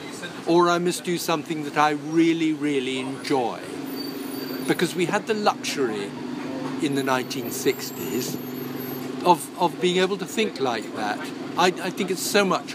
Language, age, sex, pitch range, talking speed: English, 50-69, male, 140-180 Hz, 150 wpm